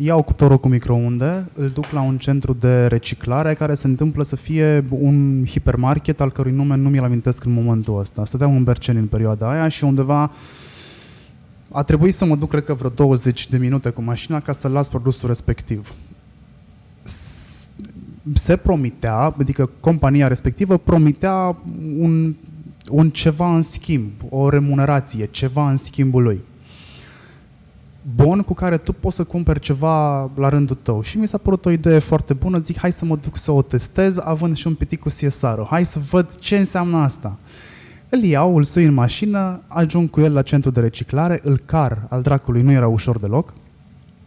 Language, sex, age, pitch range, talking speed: Romanian, male, 20-39, 130-165 Hz, 180 wpm